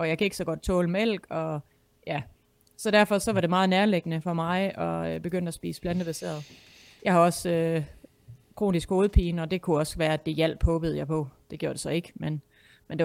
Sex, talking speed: female, 230 wpm